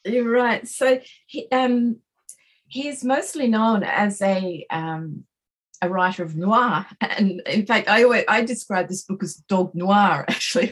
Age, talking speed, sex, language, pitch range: 30-49, 160 wpm, female, English, 185-235 Hz